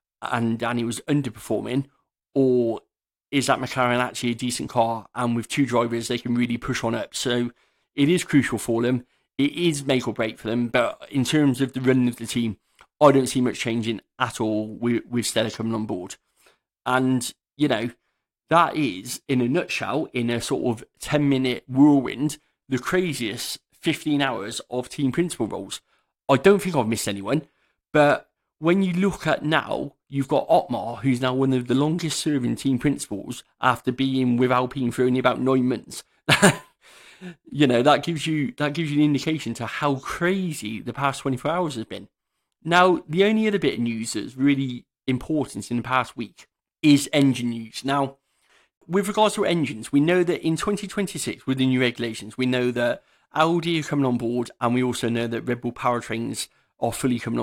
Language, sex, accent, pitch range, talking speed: English, male, British, 120-145 Hz, 190 wpm